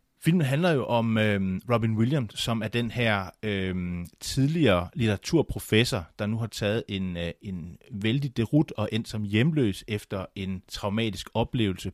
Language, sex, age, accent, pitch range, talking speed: Danish, male, 30-49, native, 100-130 Hz, 155 wpm